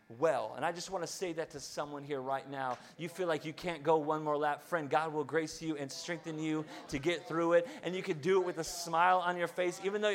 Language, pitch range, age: English, 160-200 Hz, 30-49